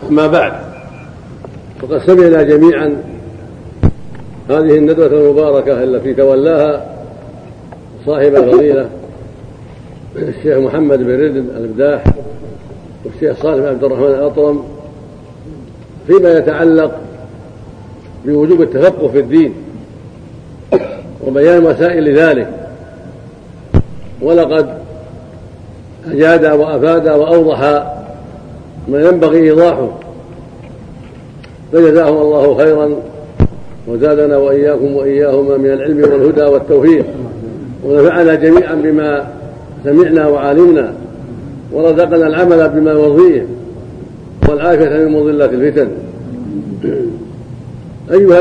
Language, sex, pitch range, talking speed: Arabic, male, 140-165 Hz, 75 wpm